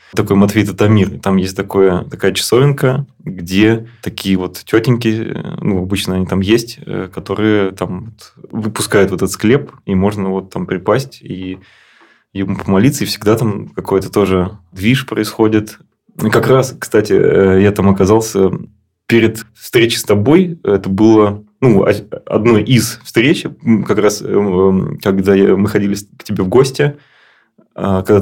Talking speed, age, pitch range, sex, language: 135 wpm, 20-39, 95-110 Hz, male, Russian